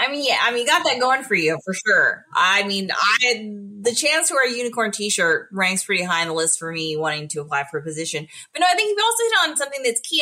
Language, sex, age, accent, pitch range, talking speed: English, female, 20-39, American, 175-240 Hz, 275 wpm